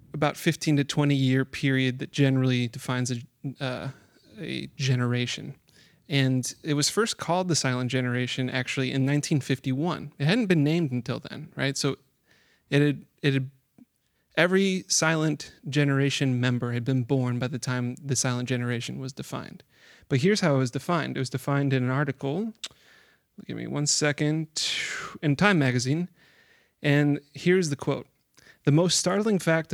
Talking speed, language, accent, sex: 155 wpm, English, American, male